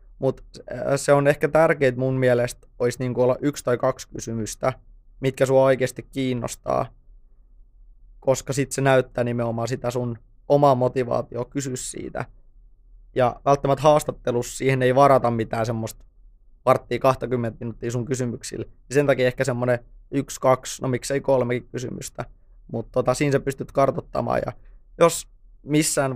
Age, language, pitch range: 20-39, Finnish, 120-135 Hz